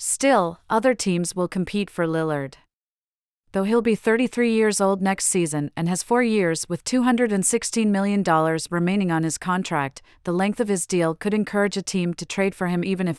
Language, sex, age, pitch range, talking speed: English, female, 40-59, 165-200 Hz, 185 wpm